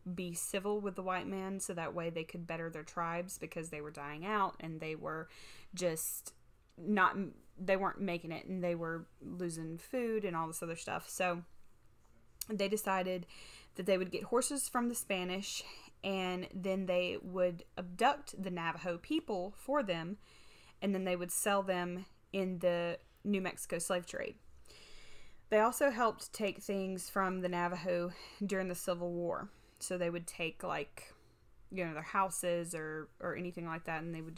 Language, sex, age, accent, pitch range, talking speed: English, female, 20-39, American, 170-205 Hz, 175 wpm